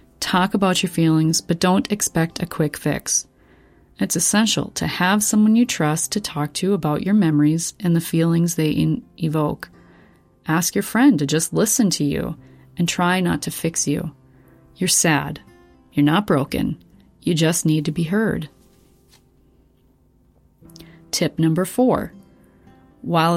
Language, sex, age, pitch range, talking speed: English, female, 30-49, 155-180 Hz, 145 wpm